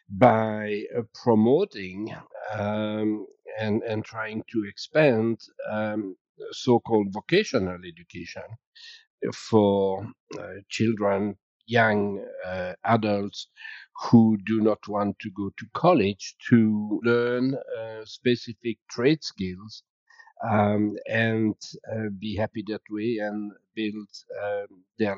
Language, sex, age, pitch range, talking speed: English, male, 50-69, 105-125 Hz, 105 wpm